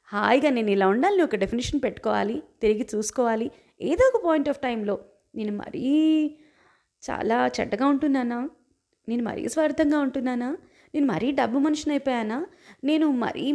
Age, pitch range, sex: 20-39, 225-290 Hz, female